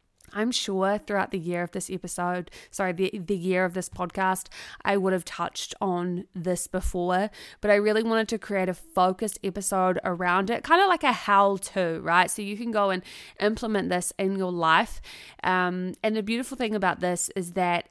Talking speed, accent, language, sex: 195 wpm, Australian, English, female